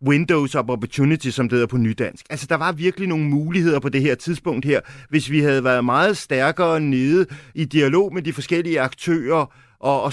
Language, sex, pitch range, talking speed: Danish, male, 130-165 Hz, 200 wpm